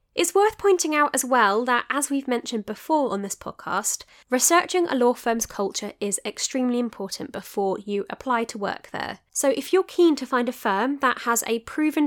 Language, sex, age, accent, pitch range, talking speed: English, female, 20-39, British, 205-280 Hz, 200 wpm